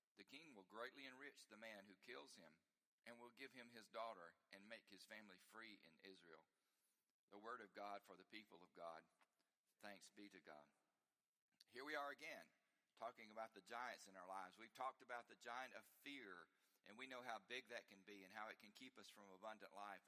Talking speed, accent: 210 wpm, American